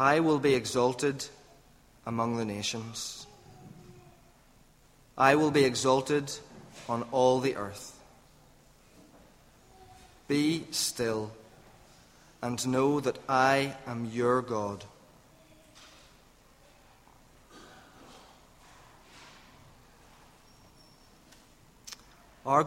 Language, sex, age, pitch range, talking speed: English, male, 40-59, 120-140 Hz, 65 wpm